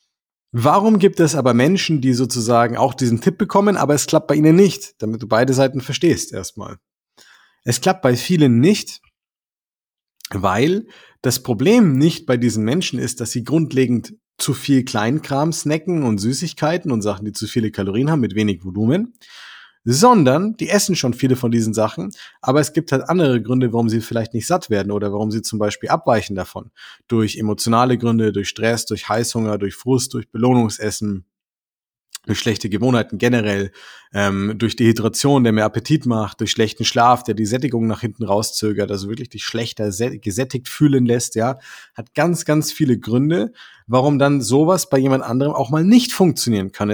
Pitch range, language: 110-150 Hz, German